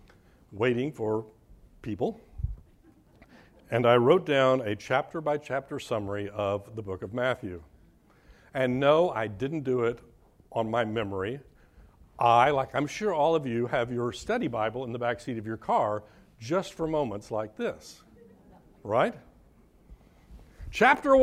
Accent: American